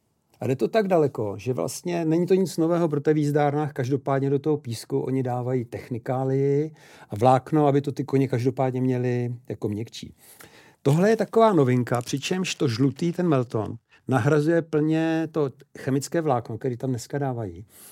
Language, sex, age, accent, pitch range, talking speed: Czech, male, 50-69, native, 125-150 Hz, 165 wpm